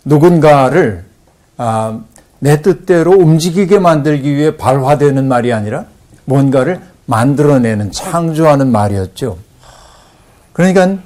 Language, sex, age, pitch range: Korean, male, 50-69, 120-160 Hz